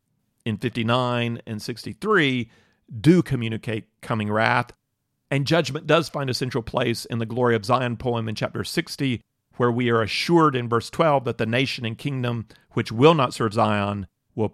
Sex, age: male, 40-59